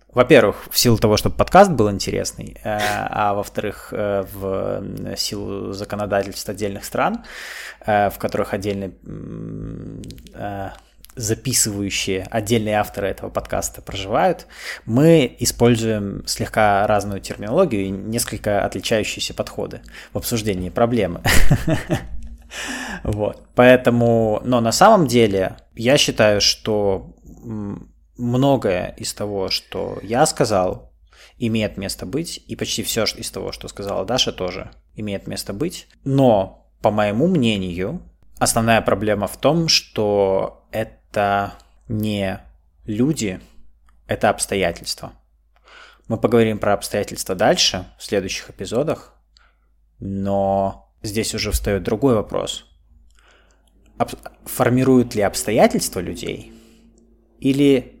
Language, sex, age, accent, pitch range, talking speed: Russian, male, 20-39, native, 100-115 Hz, 100 wpm